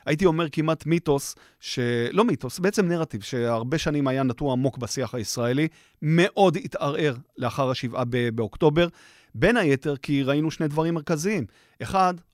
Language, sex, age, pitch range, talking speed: Hebrew, male, 30-49, 130-170 Hz, 140 wpm